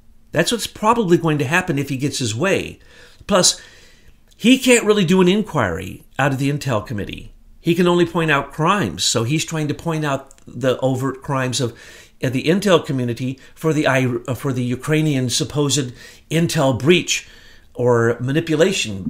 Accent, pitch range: American, 125-175 Hz